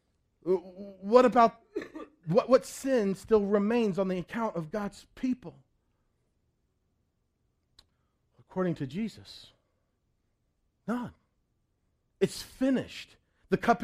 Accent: American